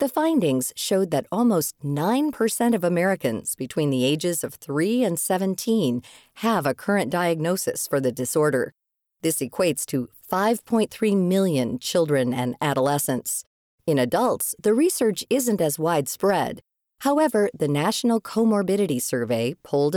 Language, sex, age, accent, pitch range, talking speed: English, female, 40-59, American, 135-205 Hz, 130 wpm